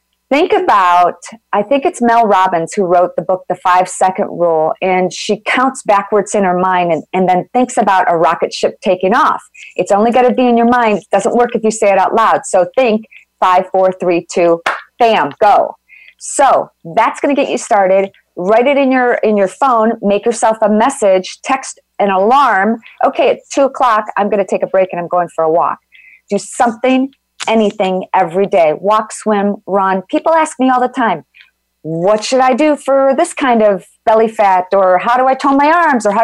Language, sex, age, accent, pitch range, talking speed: English, female, 40-59, American, 190-250 Hz, 210 wpm